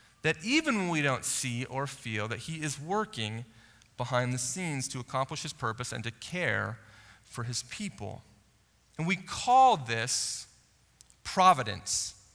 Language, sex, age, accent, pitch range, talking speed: English, male, 30-49, American, 130-200 Hz, 145 wpm